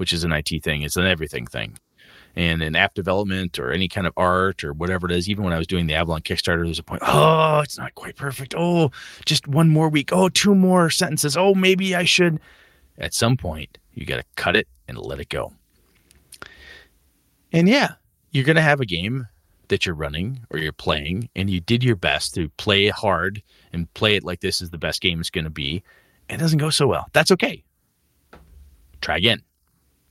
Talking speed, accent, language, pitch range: 210 wpm, American, English, 85-140 Hz